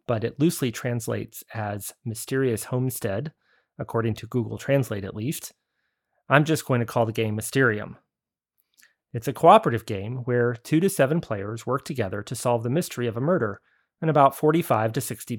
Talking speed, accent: 170 wpm, American